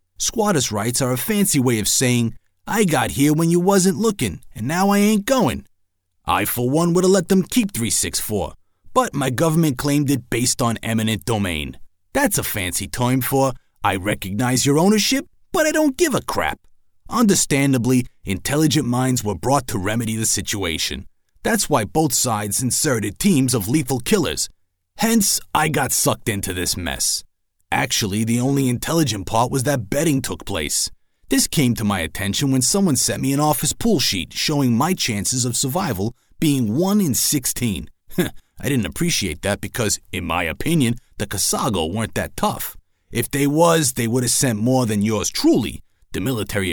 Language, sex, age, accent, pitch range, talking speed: English, male, 30-49, American, 100-150 Hz, 175 wpm